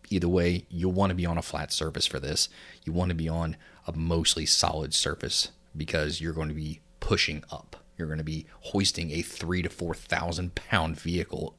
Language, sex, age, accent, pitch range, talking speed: English, male, 30-49, American, 75-90 Hz, 200 wpm